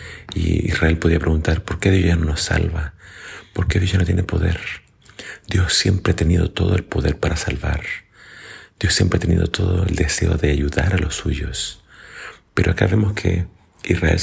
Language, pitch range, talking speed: Spanish, 80-95 Hz, 185 wpm